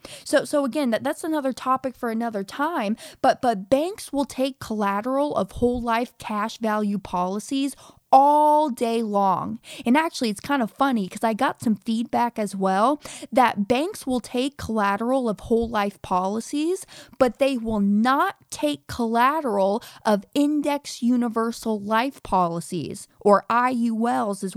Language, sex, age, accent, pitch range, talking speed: English, female, 20-39, American, 205-265 Hz, 150 wpm